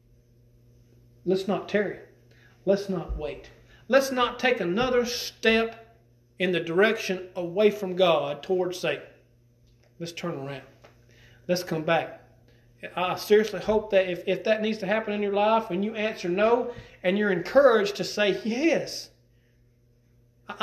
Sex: male